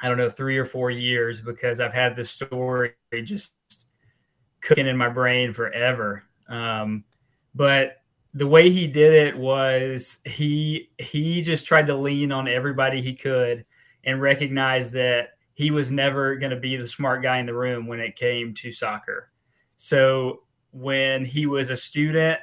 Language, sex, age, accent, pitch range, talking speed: English, male, 20-39, American, 125-140 Hz, 165 wpm